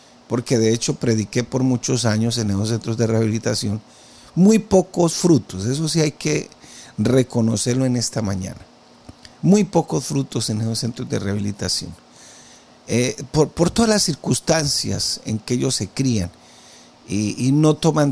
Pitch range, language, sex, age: 110-140 Hz, Spanish, male, 50-69